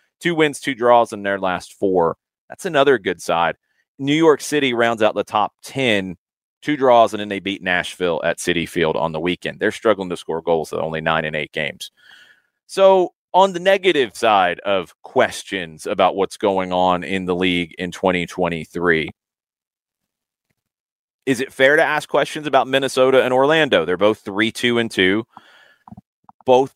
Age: 30-49